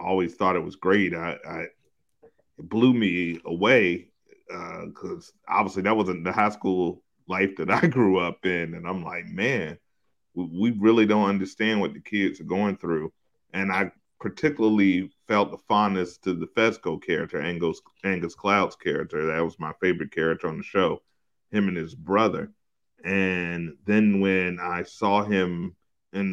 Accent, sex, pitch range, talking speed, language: American, male, 90-100 Hz, 165 wpm, English